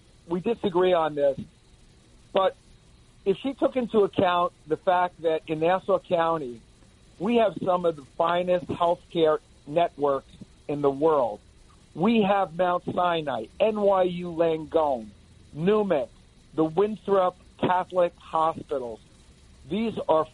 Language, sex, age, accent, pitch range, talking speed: English, male, 50-69, American, 150-180 Hz, 120 wpm